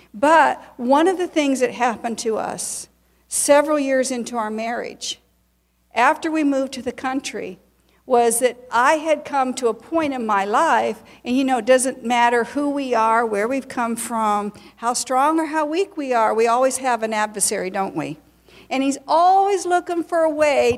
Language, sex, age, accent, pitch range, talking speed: English, female, 50-69, American, 230-285 Hz, 190 wpm